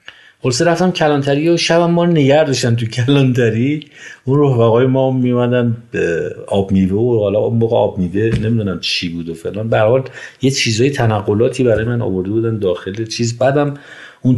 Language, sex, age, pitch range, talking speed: Persian, male, 50-69, 100-130 Hz, 165 wpm